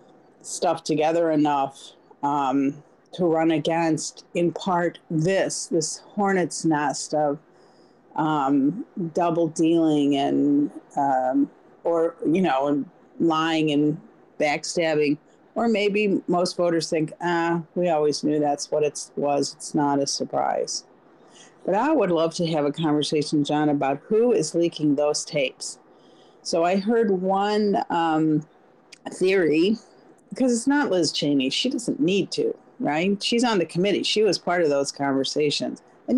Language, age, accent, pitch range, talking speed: English, 50-69, American, 150-210 Hz, 140 wpm